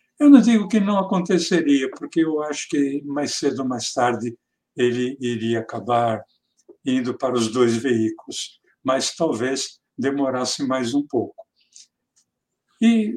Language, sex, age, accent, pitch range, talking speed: Portuguese, male, 60-79, Brazilian, 130-190 Hz, 135 wpm